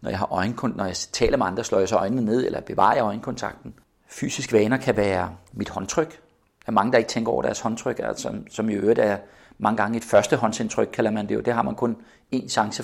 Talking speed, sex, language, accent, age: 250 wpm, male, Danish, native, 40-59